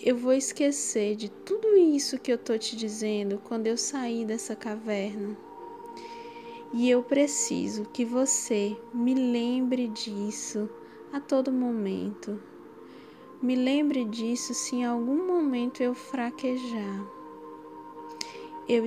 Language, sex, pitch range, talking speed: Portuguese, female, 220-260 Hz, 120 wpm